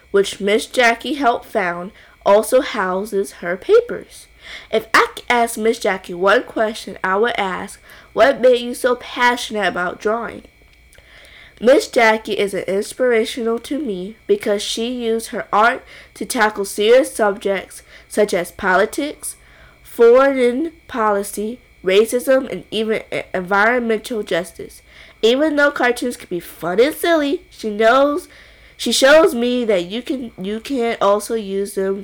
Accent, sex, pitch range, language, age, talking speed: American, female, 200-255 Hz, English, 20-39, 140 wpm